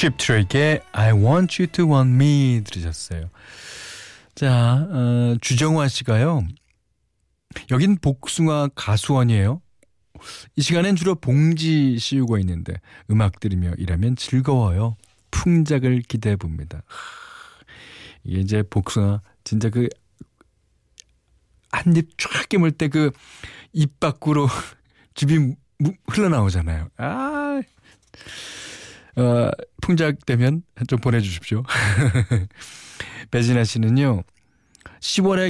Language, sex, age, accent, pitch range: Korean, male, 40-59, native, 105-150 Hz